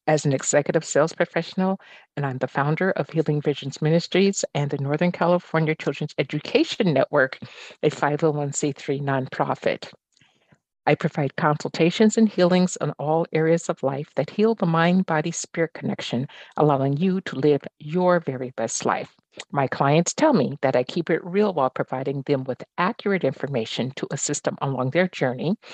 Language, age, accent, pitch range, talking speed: English, 50-69, American, 145-185 Hz, 155 wpm